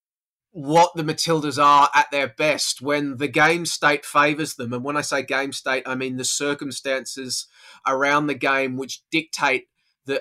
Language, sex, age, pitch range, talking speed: English, male, 20-39, 130-155 Hz, 170 wpm